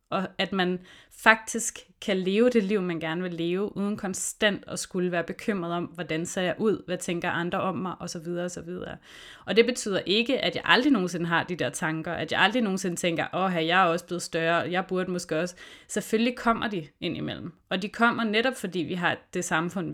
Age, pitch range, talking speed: 20-39, 170-210 Hz, 220 wpm